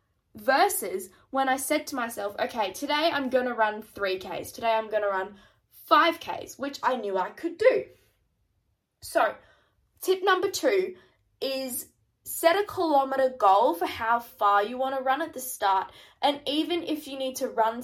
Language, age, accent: English, 10-29, Australian